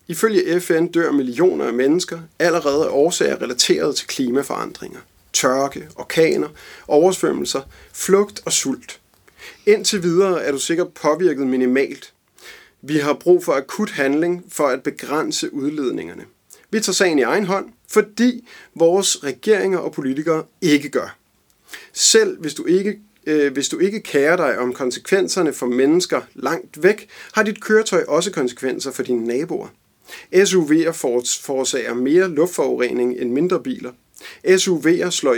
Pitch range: 150-220 Hz